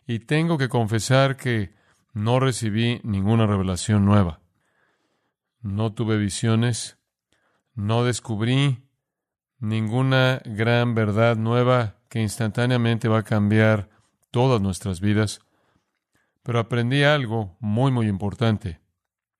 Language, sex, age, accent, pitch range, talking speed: Spanish, male, 40-59, Mexican, 110-130 Hz, 100 wpm